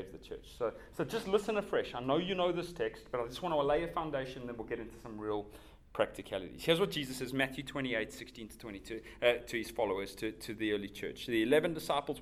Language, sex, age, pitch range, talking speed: English, male, 30-49, 105-135 Hz, 240 wpm